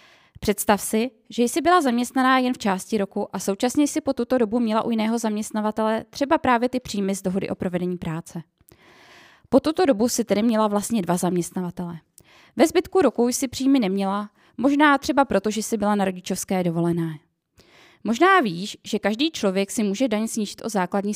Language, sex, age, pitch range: Czech, female, 20-39, 195-250 Hz